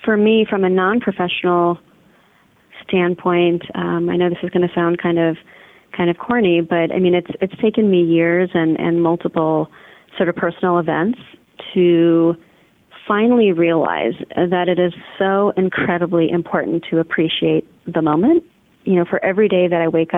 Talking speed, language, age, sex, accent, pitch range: 165 wpm, English, 30-49, female, American, 170-185 Hz